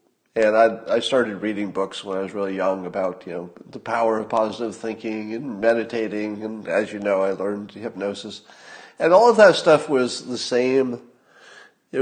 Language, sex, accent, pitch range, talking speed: English, male, American, 105-145 Hz, 185 wpm